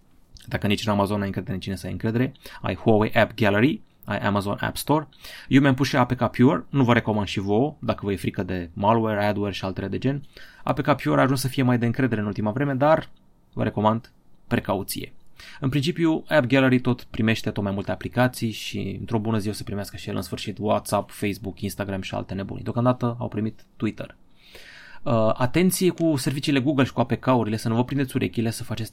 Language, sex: Romanian, male